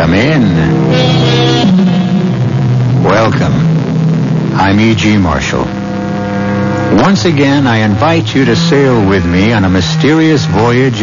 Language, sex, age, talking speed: English, male, 70-89, 105 wpm